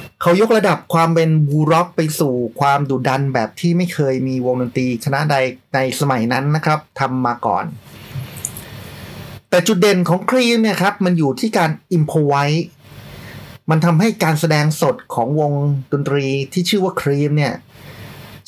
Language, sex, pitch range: Thai, male, 135-160 Hz